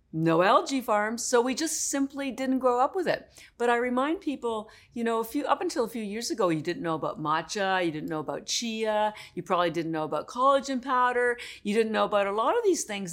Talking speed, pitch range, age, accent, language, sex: 230 wpm, 195-250 Hz, 50-69, American, English, female